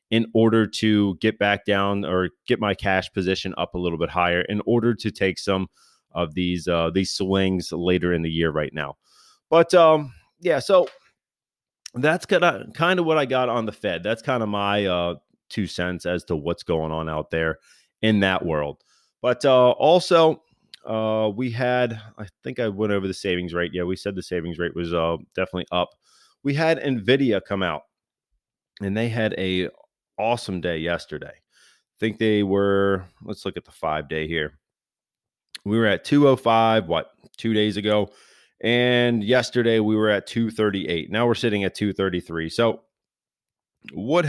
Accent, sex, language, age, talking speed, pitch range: American, male, English, 30-49, 175 wpm, 90-115 Hz